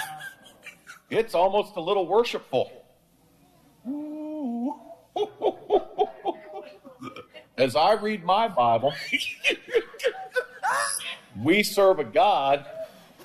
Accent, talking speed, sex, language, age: American, 65 wpm, male, English, 50-69